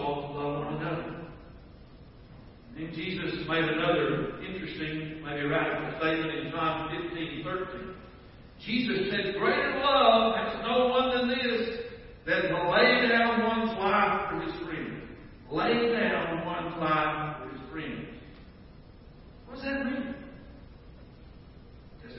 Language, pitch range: English, 155-225 Hz